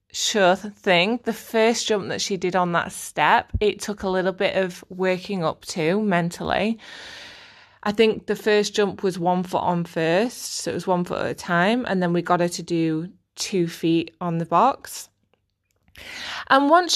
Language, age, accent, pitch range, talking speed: English, 20-39, British, 180-225 Hz, 190 wpm